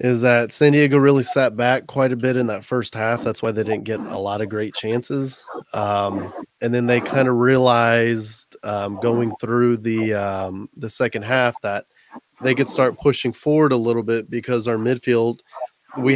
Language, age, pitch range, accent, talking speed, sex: English, 20-39, 115-130 Hz, American, 195 wpm, male